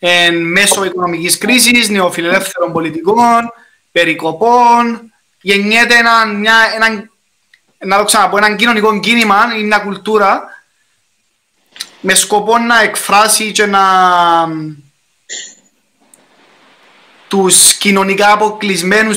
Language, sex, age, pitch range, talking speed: Greek, male, 20-39, 185-250 Hz, 75 wpm